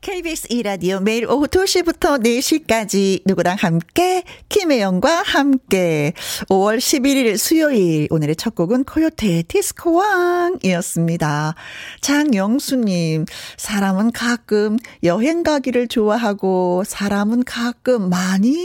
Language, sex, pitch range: Korean, female, 185-255 Hz